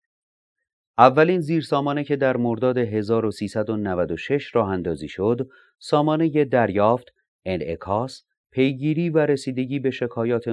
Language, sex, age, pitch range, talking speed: Persian, male, 30-49, 95-135 Hz, 105 wpm